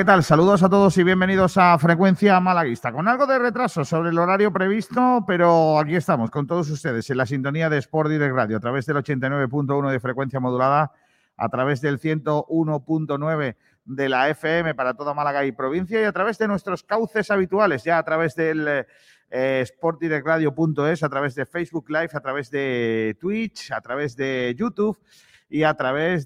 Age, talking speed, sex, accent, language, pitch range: 40-59, 185 wpm, male, Spanish, Spanish, 130-180 Hz